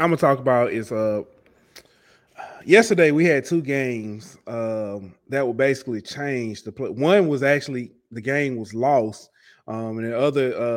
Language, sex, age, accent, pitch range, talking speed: English, male, 20-39, American, 115-145 Hz, 165 wpm